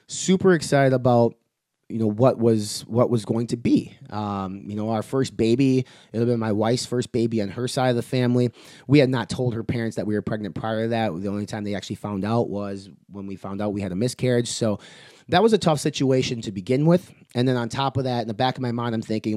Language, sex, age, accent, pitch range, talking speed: English, male, 30-49, American, 110-130 Hz, 255 wpm